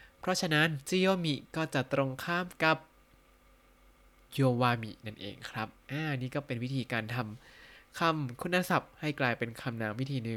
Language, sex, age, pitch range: Thai, male, 20-39, 115-150 Hz